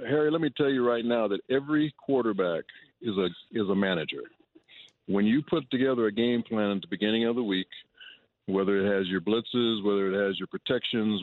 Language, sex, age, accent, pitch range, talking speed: English, male, 50-69, American, 100-125 Hz, 205 wpm